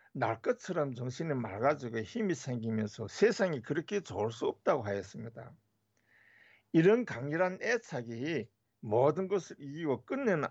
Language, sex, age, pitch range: Korean, male, 60-79, 115-190 Hz